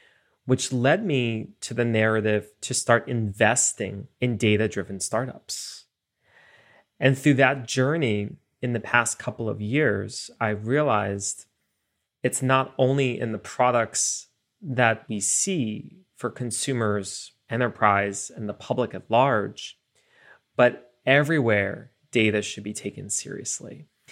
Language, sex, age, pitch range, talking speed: English, male, 30-49, 110-130 Hz, 120 wpm